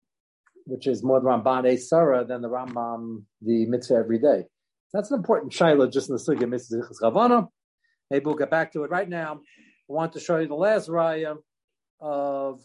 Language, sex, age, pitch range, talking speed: English, male, 40-59, 110-135 Hz, 185 wpm